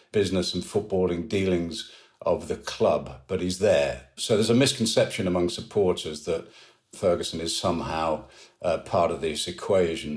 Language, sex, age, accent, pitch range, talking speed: English, male, 50-69, British, 90-105 Hz, 150 wpm